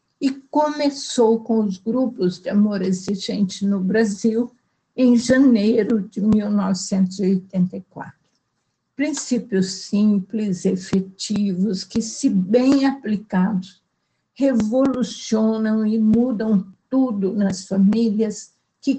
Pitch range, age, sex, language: 195-230 Hz, 60-79, female, Portuguese